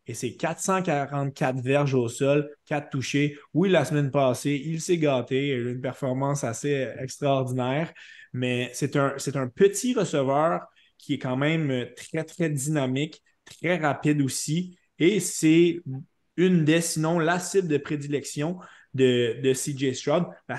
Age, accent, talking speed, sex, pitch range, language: 20-39, Canadian, 155 wpm, male, 130-155 Hz, French